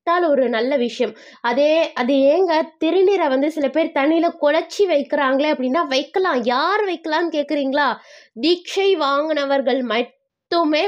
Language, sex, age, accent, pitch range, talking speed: Tamil, female, 20-39, native, 255-315 Hz, 115 wpm